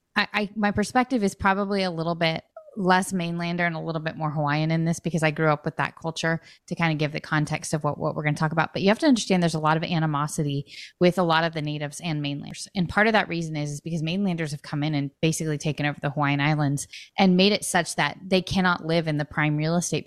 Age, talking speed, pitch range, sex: 20-39, 270 wpm, 155-185 Hz, female